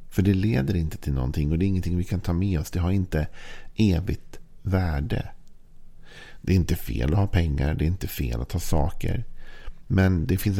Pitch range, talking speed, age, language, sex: 80-95 Hz, 210 wpm, 50-69, Swedish, male